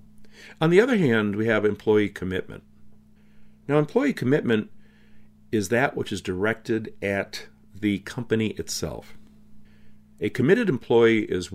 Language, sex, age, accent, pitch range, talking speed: English, male, 50-69, American, 85-115 Hz, 125 wpm